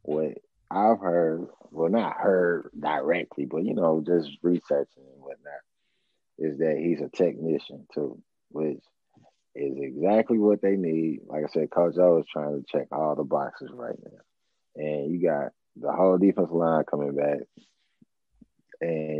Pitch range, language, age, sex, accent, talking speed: 75-95 Hz, English, 30-49, male, American, 155 wpm